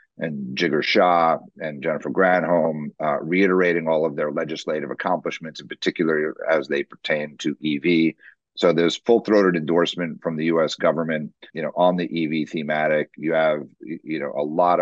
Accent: American